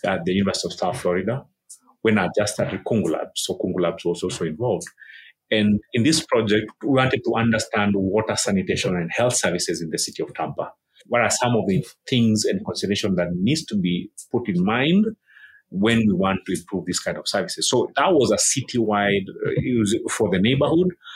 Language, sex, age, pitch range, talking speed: English, male, 30-49, 100-135 Hz, 195 wpm